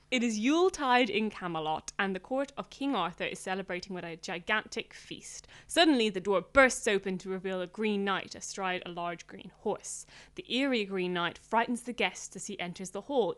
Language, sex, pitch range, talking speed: English, female, 185-240 Hz, 195 wpm